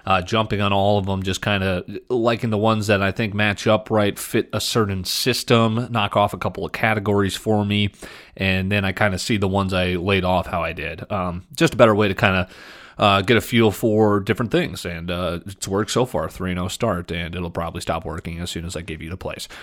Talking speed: 240 wpm